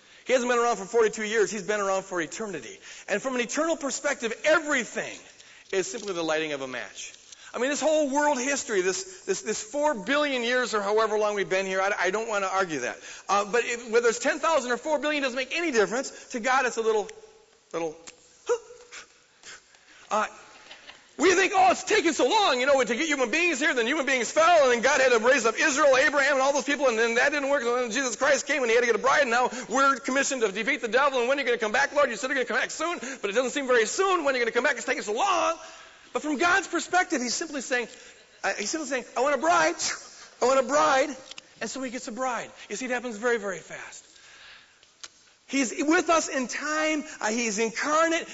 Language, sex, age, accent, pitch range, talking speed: English, male, 40-59, American, 230-305 Hz, 250 wpm